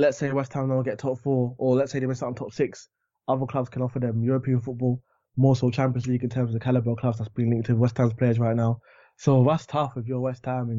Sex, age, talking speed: male, 20-39, 290 wpm